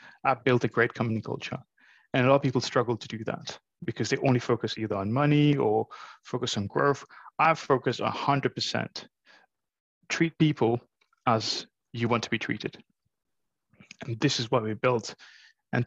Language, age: English, 20-39